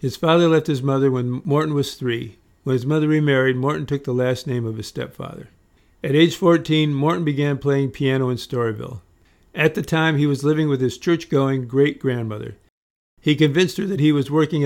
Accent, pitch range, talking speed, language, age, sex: American, 125-150 Hz, 190 wpm, English, 50-69, male